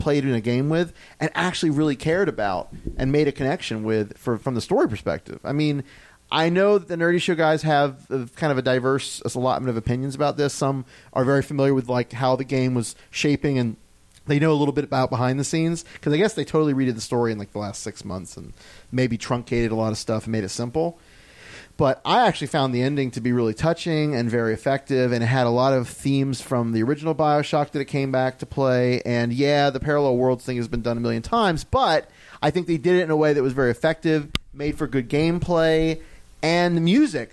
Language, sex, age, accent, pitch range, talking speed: English, male, 40-59, American, 130-160 Hz, 235 wpm